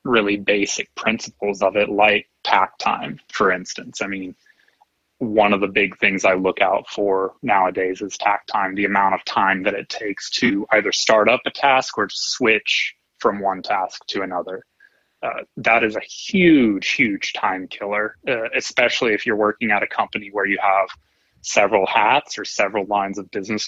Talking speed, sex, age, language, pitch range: 180 wpm, male, 20-39, English, 105-130 Hz